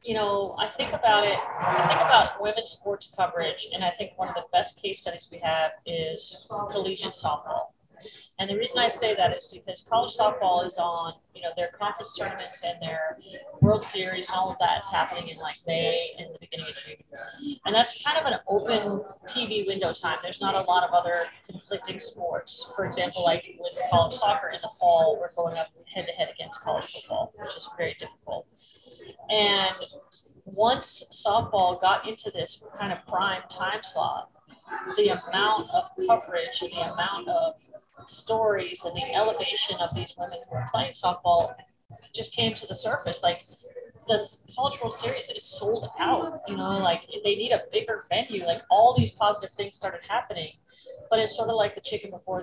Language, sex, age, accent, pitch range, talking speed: English, female, 40-59, American, 180-275 Hz, 185 wpm